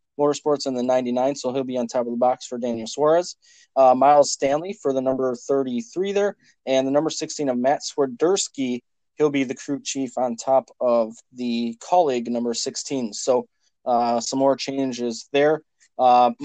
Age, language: 20-39, English